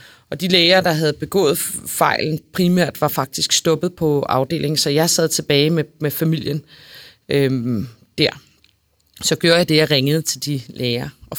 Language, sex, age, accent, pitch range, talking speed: Danish, female, 30-49, native, 140-160 Hz, 165 wpm